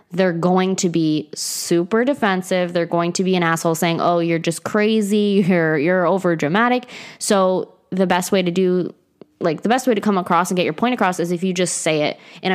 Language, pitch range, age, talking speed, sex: English, 165-205 Hz, 20-39, 220 wpm, female